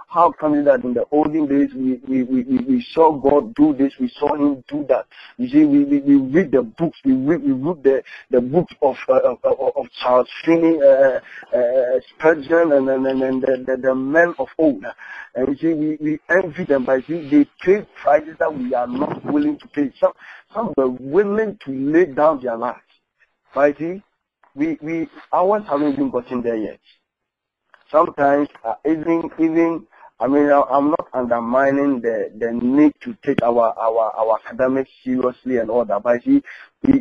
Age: 50-69